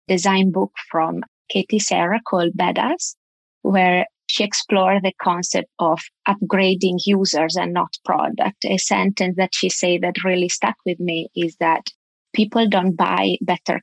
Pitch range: 175-200 Hz